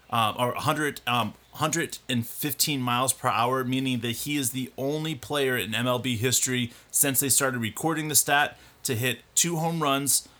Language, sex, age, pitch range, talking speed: English, male, 30-49, 115-135 Hz, 165 wpm